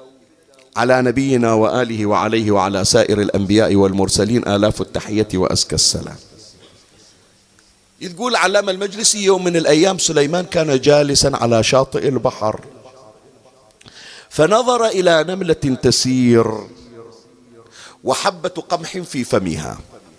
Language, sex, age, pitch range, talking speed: Arabic, male, 50-69, 110-165 Hz, 95 wpm